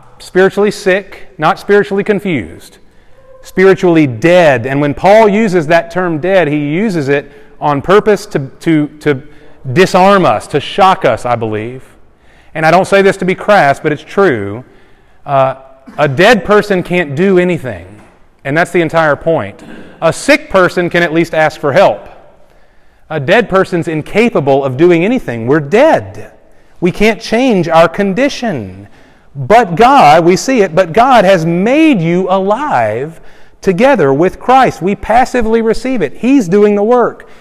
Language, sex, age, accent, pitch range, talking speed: English, male, 30-49, American, 150-210 Hz, 155 wpm